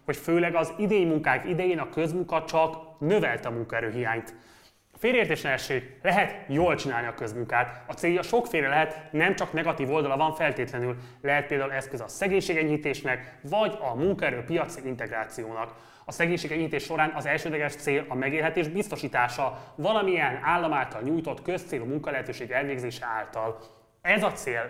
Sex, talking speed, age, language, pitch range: male, 140 wpm, 20-39, Hungarian, 125-170 Hz